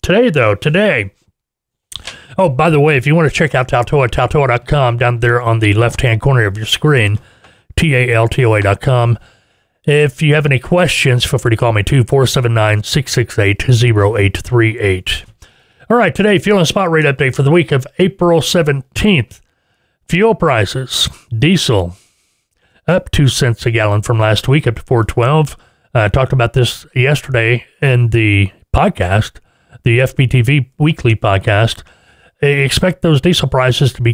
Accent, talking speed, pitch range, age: American, 170 wpm, 115-145 Hz, 30-49